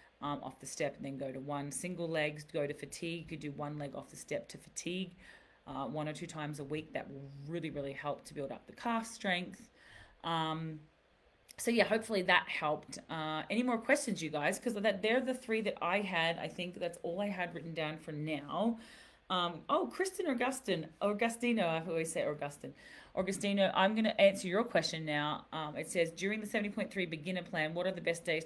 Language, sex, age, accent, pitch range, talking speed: English, female, 30-49, Australian, 155-200 Hz, 215 wpm